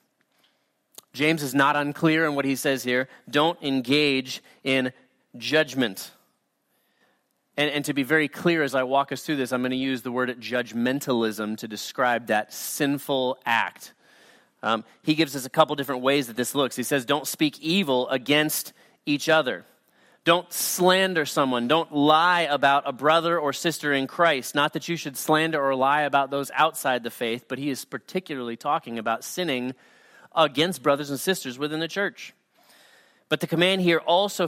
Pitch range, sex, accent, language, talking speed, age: 130-165 Hz, male, American, English, 170 wpm, 30-49